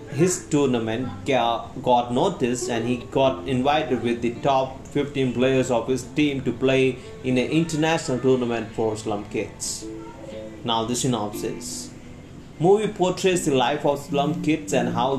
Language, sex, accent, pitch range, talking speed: Hindi, male, native, 120-150 Hz, 145 wpm